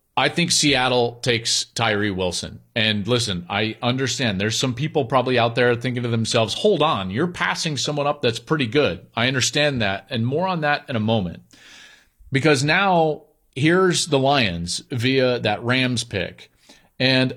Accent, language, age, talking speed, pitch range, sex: American, English, 40-59, 165 wpm, 115-145 Hz, male